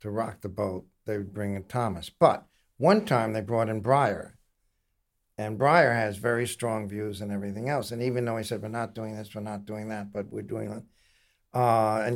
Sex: male